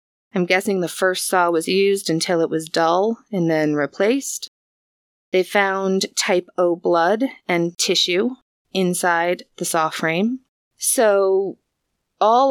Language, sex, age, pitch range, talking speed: English, female, 20-39, 165-195 Hz, 130 wpm